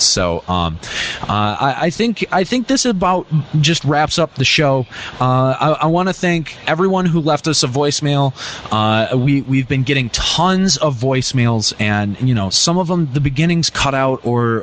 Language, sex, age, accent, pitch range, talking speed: English, male, 20-39, American, 115-155 Hz, 190 wpm